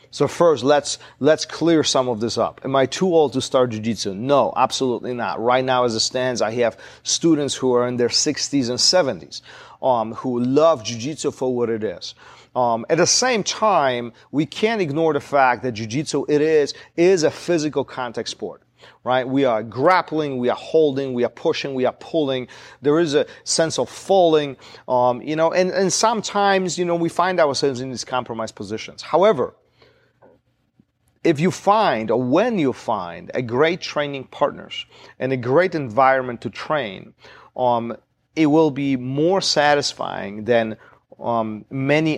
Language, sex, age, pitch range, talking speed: English, male, 40-59, 120-160 Hz, 175 wpm